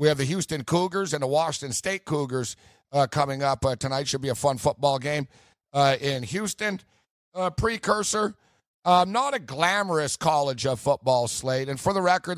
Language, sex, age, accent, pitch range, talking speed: English, male, 50-69, American, 135-175 Hz, 185 wpm